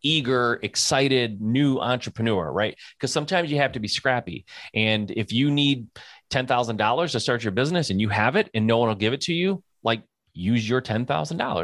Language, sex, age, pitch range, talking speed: English, male, 30-49, 105-135 Hz, 190 wpm